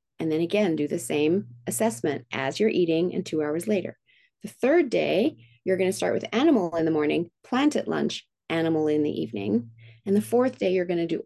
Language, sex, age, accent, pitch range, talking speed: English, female, 30-49, American, 175-230 Hz, 220 wpm